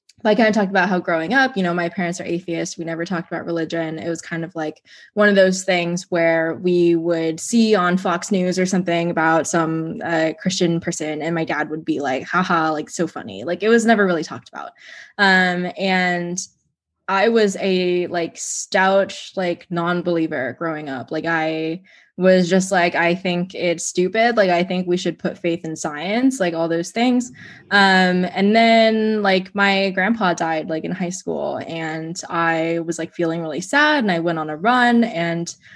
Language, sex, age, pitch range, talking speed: English, female, 20-39, 165-195 Hz, 195 wpm